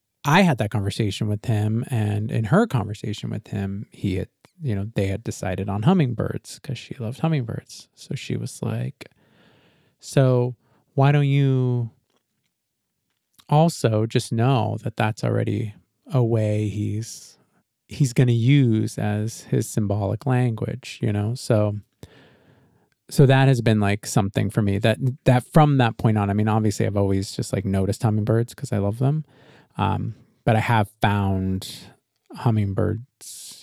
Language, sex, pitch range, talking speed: English, male, 105-135 Hz, 155 wpm